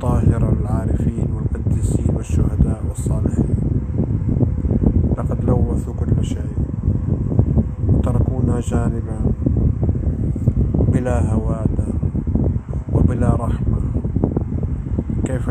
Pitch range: 105-120 Hz